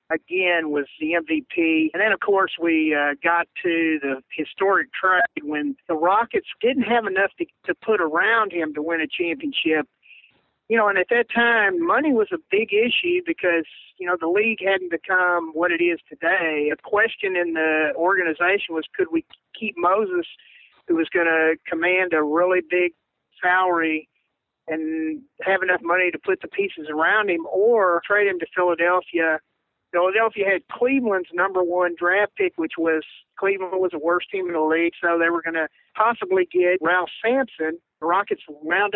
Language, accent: English, American